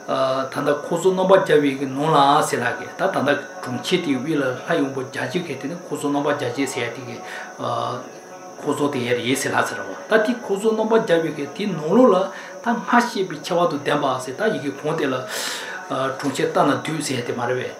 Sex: male